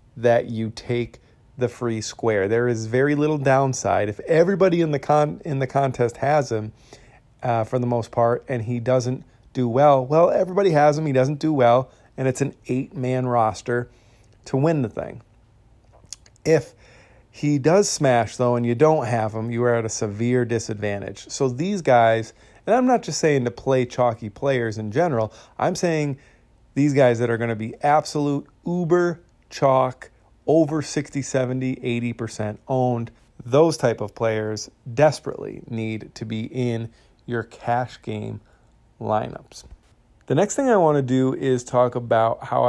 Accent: American